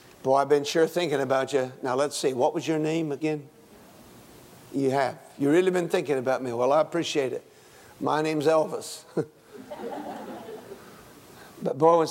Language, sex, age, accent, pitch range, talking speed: English, male, 50-69, American, 135-200 Hz, 165 wpm